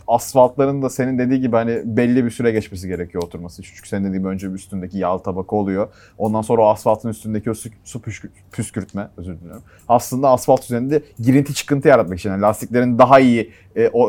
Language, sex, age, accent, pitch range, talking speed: Turkish, male, 30-49, native, 95-125 Hz, 195 wpm